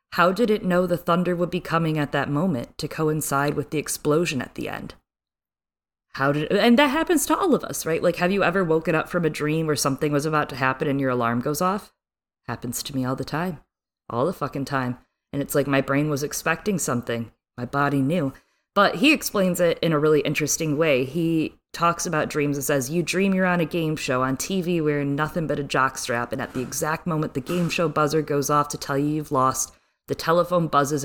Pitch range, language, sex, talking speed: 135-170 Hz, English, female, 230 wpm